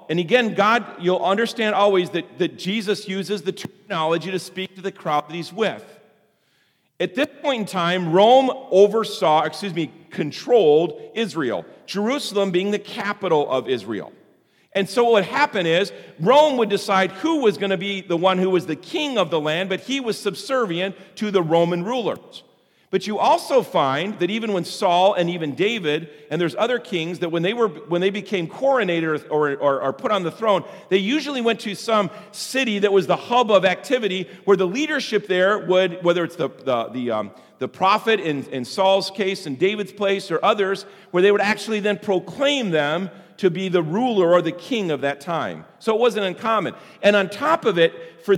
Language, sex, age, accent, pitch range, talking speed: English, male, 40-59, American, 175-215 Hz, 195 wpm